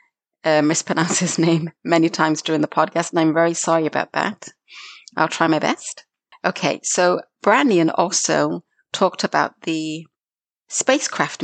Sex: female